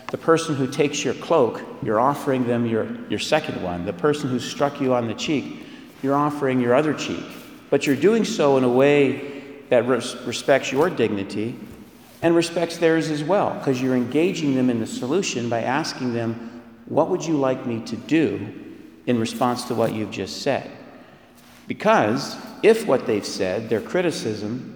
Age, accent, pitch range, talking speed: 50-69, American, 115-145 Hz, 175 wpm